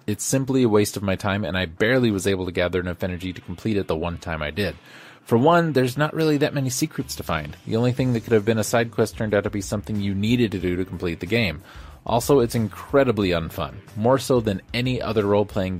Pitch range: 90-120 Hz